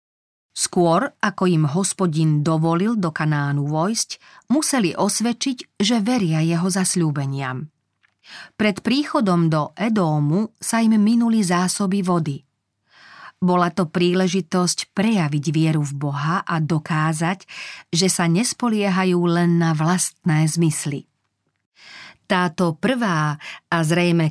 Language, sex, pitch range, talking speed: Slovak, female, 155-195 Hz, 105 wpm